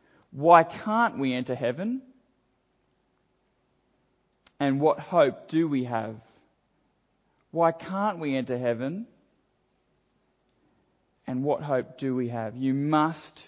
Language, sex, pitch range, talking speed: English, male, 130-175 Hz, 105 wpm